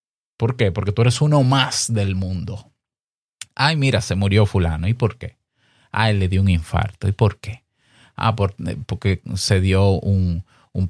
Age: 30-49